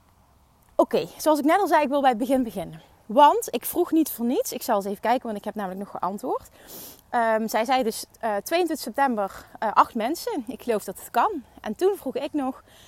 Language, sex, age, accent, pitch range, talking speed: Dutch, female, 30-49, Dutch, 215-315 Hz, 235 wpm